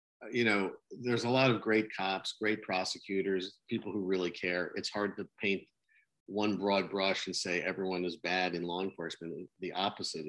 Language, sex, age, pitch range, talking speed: English, male, 50-69, 90-100 Hz, 180 wpm